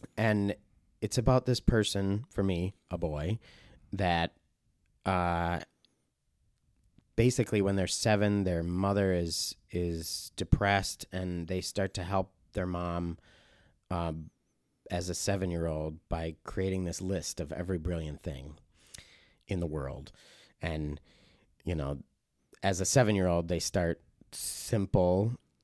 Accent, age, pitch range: American, 30-49, 85-105 Hz